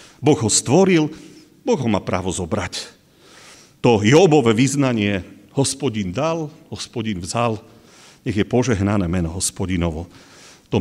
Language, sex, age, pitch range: Slovak, male, 40-59, 100-135 Hz